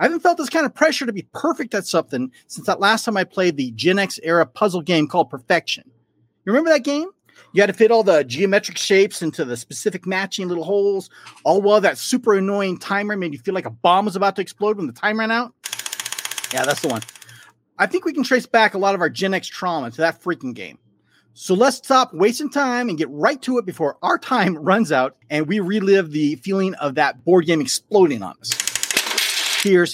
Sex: male